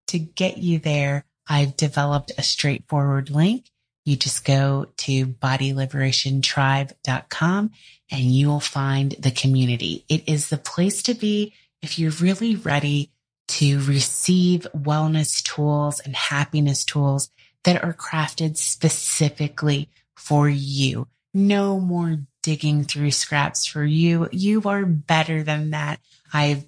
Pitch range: 135-160 Hz